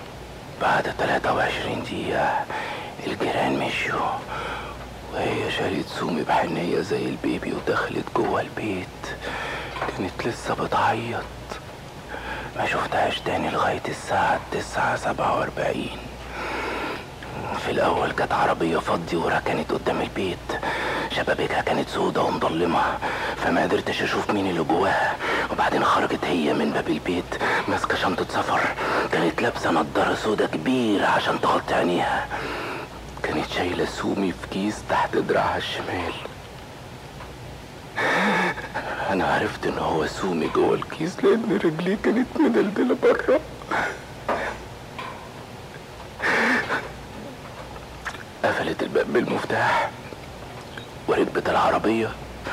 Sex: male